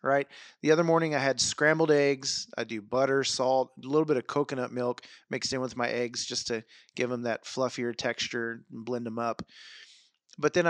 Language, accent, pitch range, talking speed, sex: English, American, 115-140 Hz, 200 wpm, male